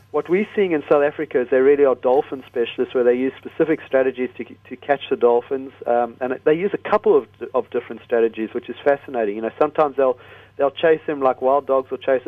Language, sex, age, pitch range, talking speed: English, male, 40-59, 130-160 Hz, 230 wpm